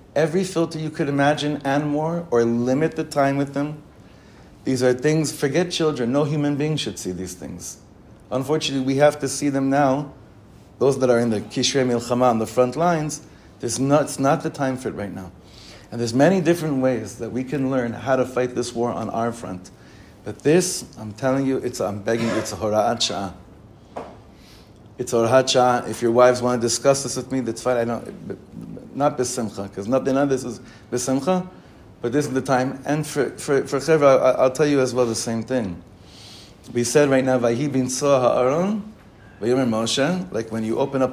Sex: male